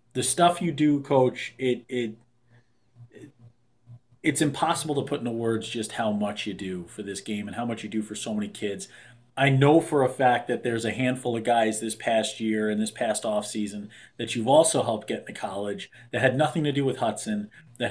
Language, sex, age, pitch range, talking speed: English, male, 30-49, 115-145 Hz, 215 wpm